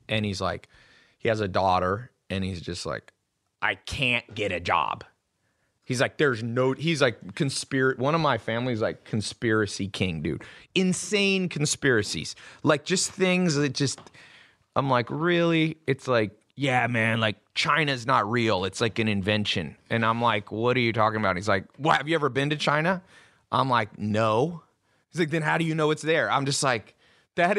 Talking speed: 190 wpm